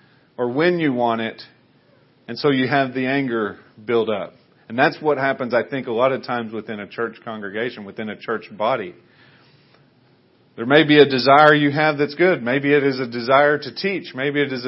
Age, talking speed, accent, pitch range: 40-59, 205 wpm, American, 120-150 Hz